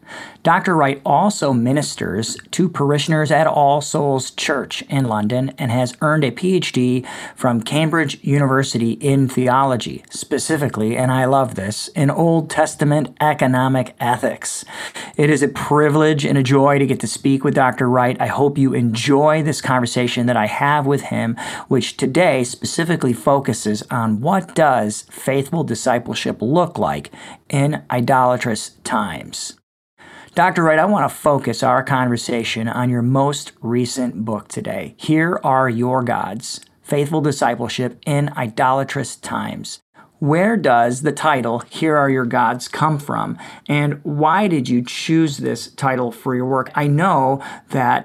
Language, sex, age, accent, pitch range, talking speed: English, male, 40-59, American, 120-150 Hz, 145 wpm